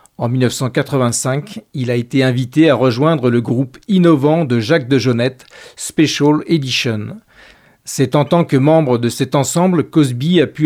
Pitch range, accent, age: 130-160 Hz, French, 40-59